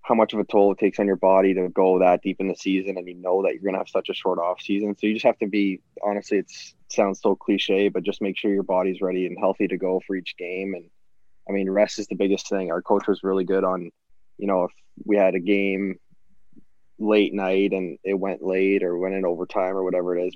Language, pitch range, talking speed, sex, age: English, 95-100 Hz, 265 wpm, male, 20-39